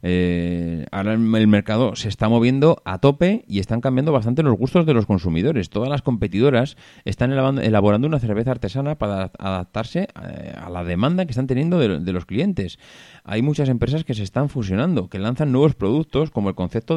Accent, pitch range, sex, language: Spanish, 95-135 Hz, male, Spanish